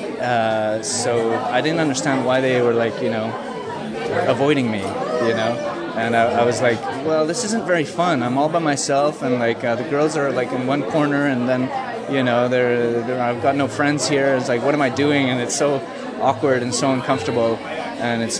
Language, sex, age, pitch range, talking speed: English, male, 20-39, 120-145 Hz, 210 wpm